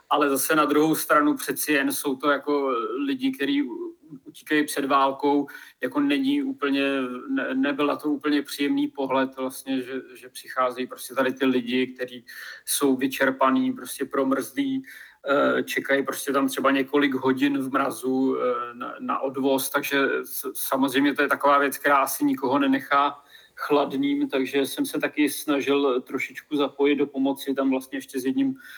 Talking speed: 150 wpm